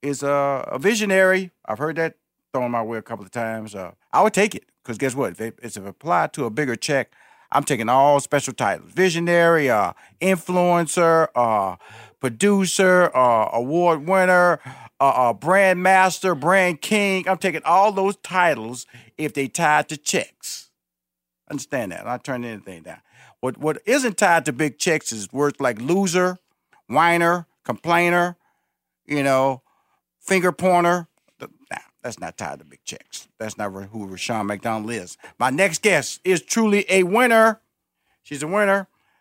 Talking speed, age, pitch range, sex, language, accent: 160 wpm, 40-59, 130-180 Hz, male, English, American